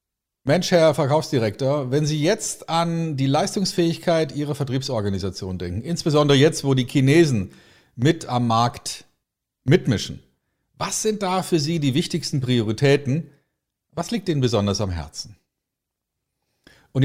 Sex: male